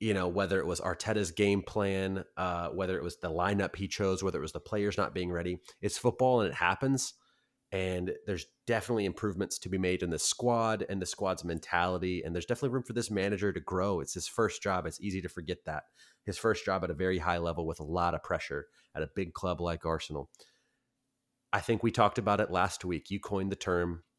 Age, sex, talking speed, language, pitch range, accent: 30-49, male, 235 wpm, English, 90-110 Hz, American